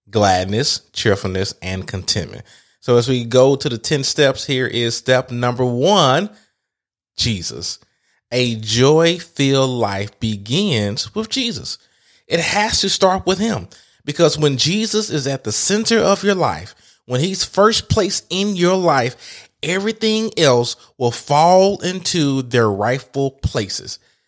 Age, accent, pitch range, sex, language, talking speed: 30-49, American, 115-165 Hz, male, English, 135 wpm